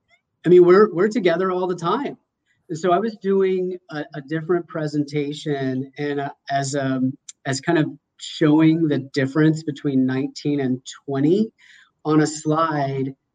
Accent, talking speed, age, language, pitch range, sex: American, 155 wpm, 30-49, English, 135-155 Hz, male